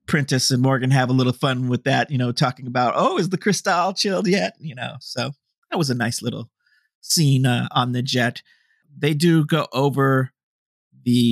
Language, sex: English, male